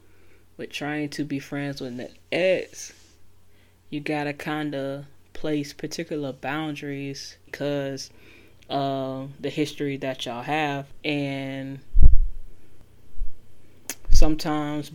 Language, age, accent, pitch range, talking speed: English, 10-29, American, 130-150 Hz, 105 wpm